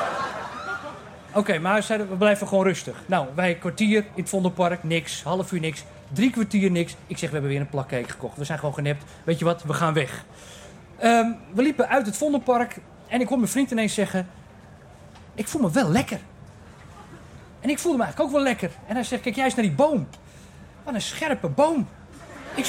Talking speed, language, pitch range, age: 210 wpm, Dutch, 180-250 Hz, 30-49